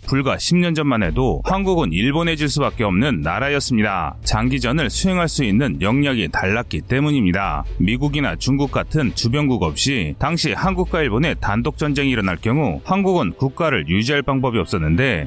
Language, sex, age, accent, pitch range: Korean, male, 30-49, native, 115-160 Hz